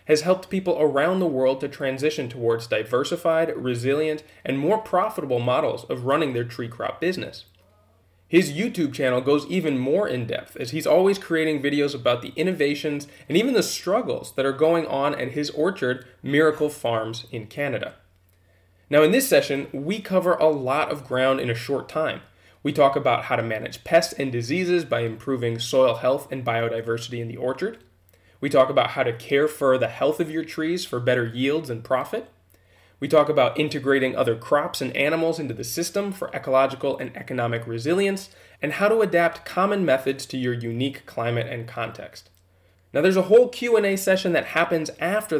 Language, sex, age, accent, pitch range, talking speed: English, male, 20-39, American, 120-160 Hz, 180 wpm